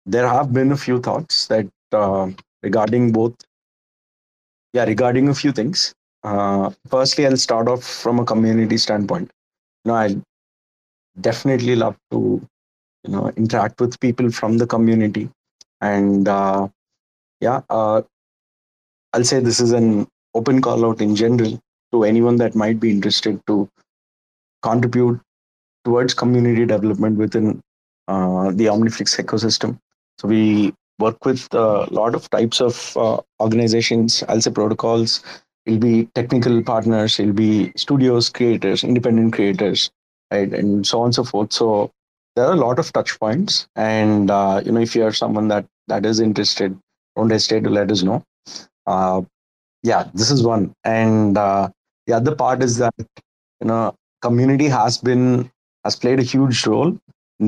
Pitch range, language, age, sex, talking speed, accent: 105-120 Hz, English, 30-49, male, 155 wpm, Indian